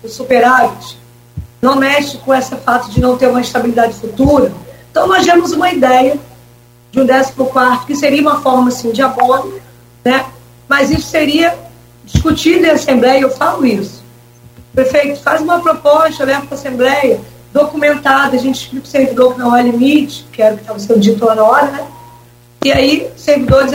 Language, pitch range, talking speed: Portuguese, 230-285 Hz, 180 wpm